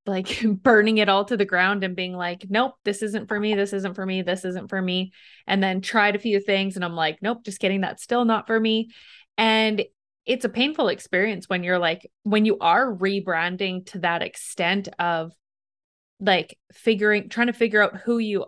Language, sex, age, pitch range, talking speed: English, female, 20-39, 190-225 Hz, 210 wpm